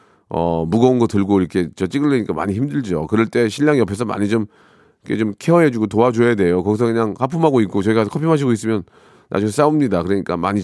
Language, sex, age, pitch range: Korean, male, 40-59, 100-150 Hz